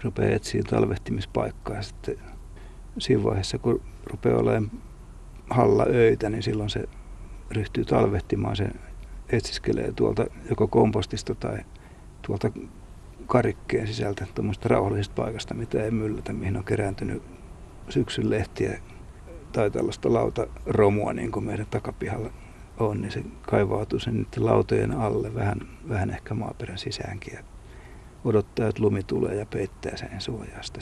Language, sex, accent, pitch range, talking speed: Finnish, male, native, 95-110 Hz, 125 wpm